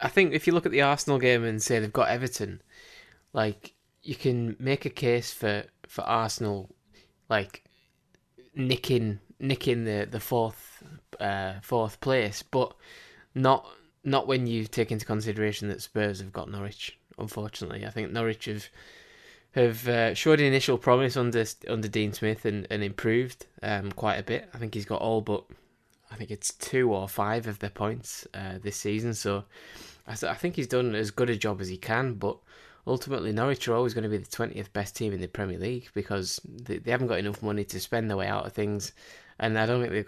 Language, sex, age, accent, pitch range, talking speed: English, male, 20-39, British, 105-125 Hz, 195 wpm